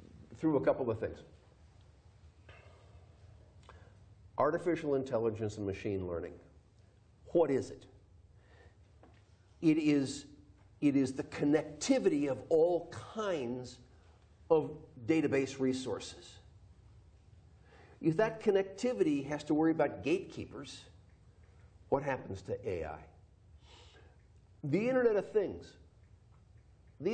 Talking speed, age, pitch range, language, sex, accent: 95 wpm, 50-69, 95-160 Hz, English, male, American